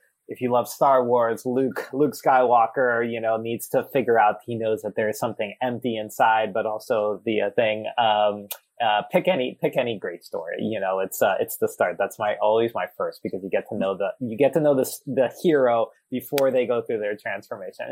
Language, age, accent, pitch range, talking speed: English, 20-39, American, 115-145 Hz, 220 wpm